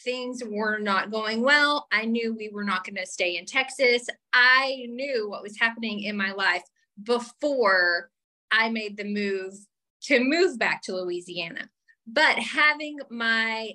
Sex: female